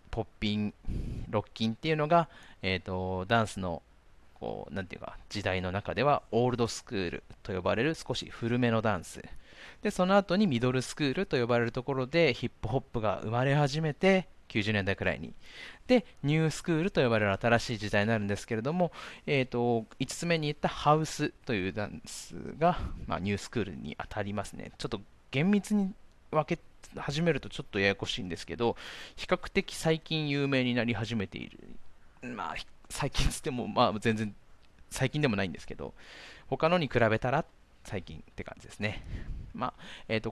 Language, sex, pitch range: Japanese, male, 100-150 Hz